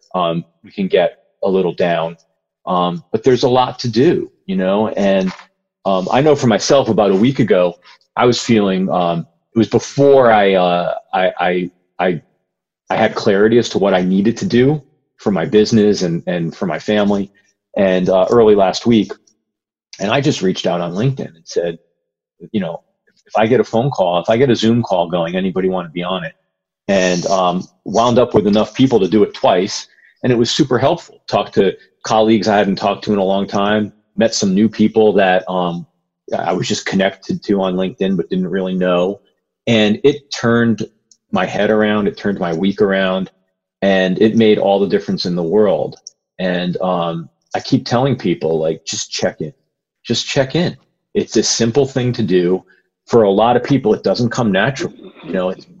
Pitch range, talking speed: 95-120 Hz, 200 wpm